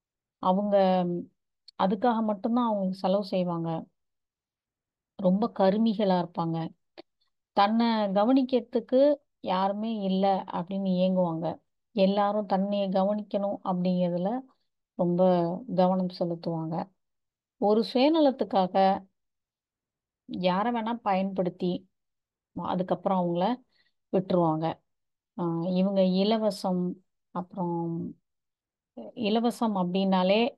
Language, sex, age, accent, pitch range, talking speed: Tamil, female, 30-49, native, 180-210 Hz, 70 wpm